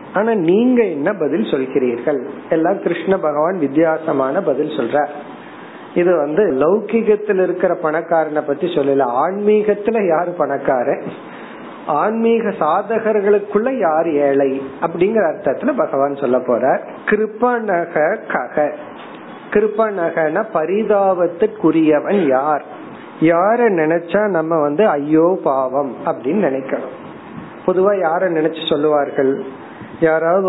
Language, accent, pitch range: Tamil, native, 150-195 Hz